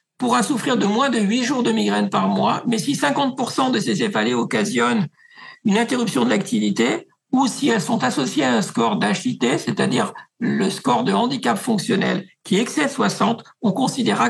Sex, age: male, 60-79